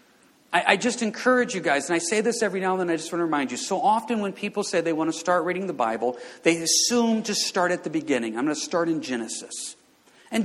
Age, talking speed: 40-59, 260 wpm